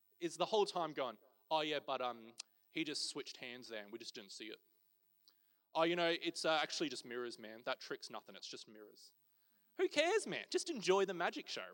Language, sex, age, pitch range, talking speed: English, male, 20-39, 150-225 Hz, 220 wpm